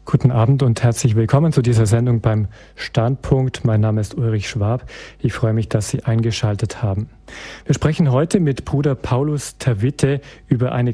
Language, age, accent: German, 40-59, German